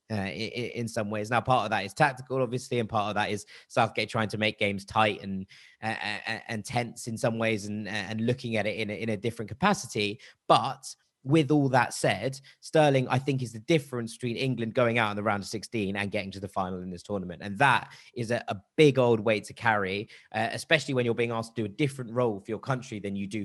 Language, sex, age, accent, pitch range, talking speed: English, male, 20-39, British, 105-120 Hz, 240 wpm